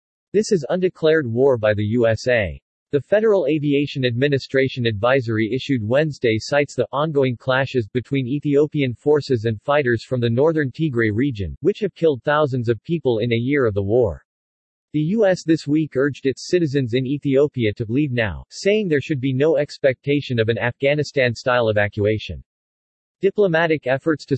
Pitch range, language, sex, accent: 120-150 Hz, English, male, American